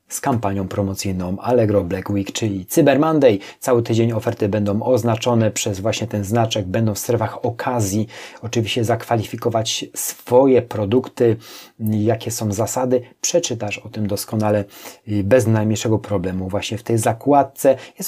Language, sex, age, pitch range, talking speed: Polish, male, 30-49, 105-125 Hz, 135 wpm